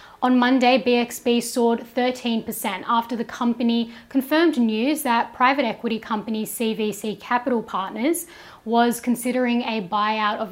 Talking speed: 125 wpm